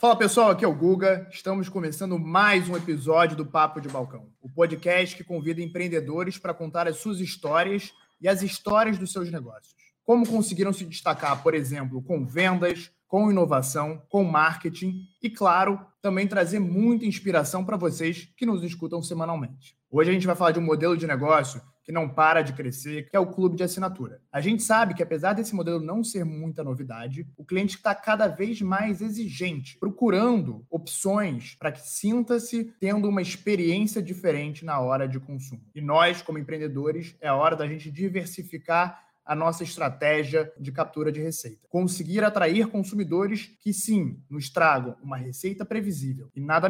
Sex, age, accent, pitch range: male, 20-39, Brazilian, 155-195 Hz